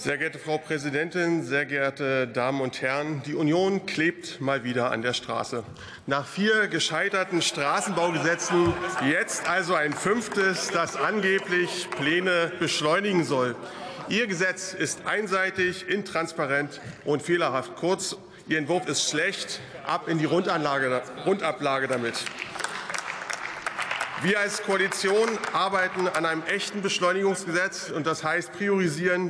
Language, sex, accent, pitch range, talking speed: German, male, German, 155-190 Hz, 120 wpm